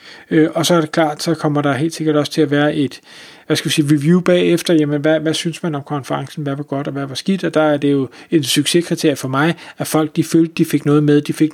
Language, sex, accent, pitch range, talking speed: Danish, male, native, 150-175 Hz, 280 wpm